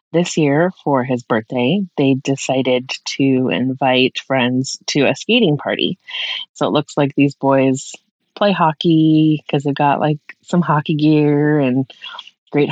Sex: female